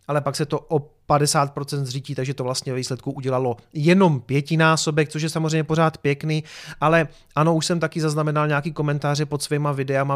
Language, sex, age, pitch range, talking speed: Czech, male, 30-49, 145-180 Hz, 175 wpm